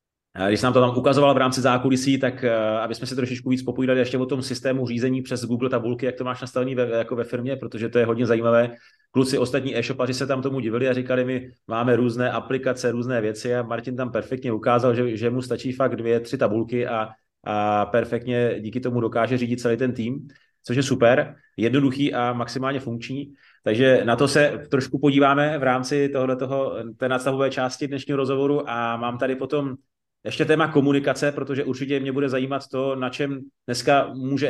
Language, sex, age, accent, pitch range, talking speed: Czech, male, 30-49, native, 120-135 Hz, 195 wpm